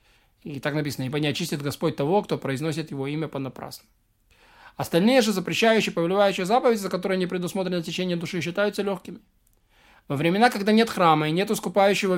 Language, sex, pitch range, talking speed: Russian, male, 160-215 Hz, 170 wpm